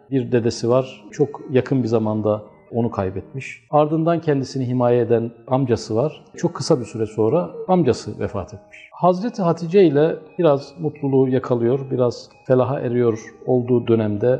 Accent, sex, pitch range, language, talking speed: native, male, 115-160 Hz, Turkish, 140 wpm